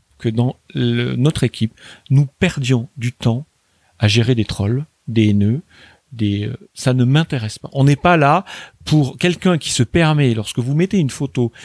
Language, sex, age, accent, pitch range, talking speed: French, male, 40-59, French, 115-150 Hz, 180 wpm